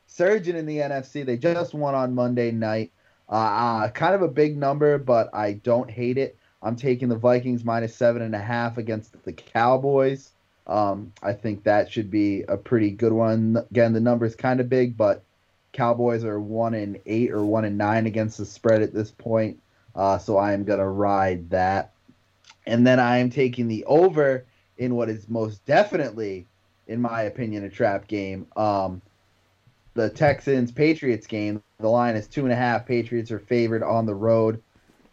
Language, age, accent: English, 20-39, American